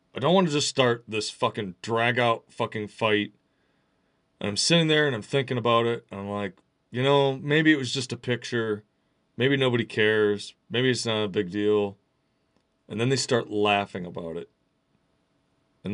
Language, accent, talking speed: English, American, 185 wpm